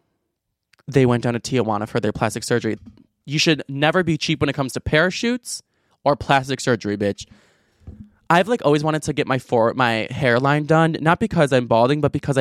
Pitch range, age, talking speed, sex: 130-160 Hz, 20-39, 195 wpm, male